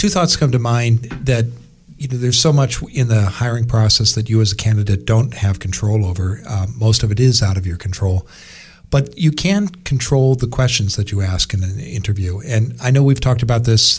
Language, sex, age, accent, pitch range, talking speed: English, male, 50-69, American, 100-125 Hz, 225 wpm